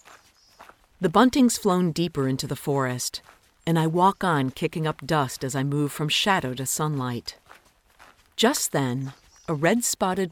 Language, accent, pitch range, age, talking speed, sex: English, American, 135-185 Hz, 50-69, 145 wpm, female